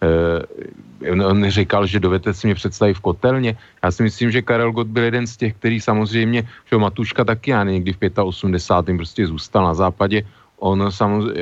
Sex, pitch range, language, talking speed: male, 100-110 Hz, Slovak, 190 wpm